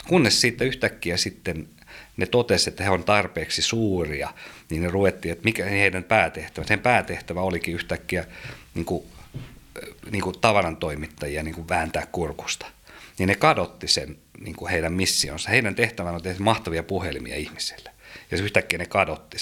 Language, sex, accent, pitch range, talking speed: Finnish, male, native, 80-110 Hz, 150 wpm